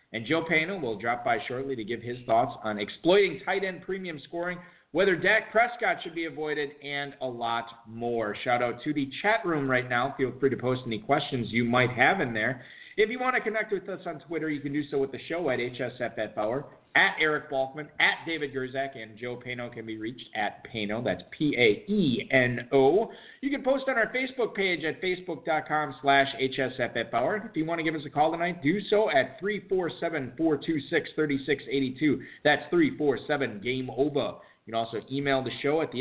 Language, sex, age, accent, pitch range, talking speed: English, male, 40-59, American, 125-170 Hz, 195 wpm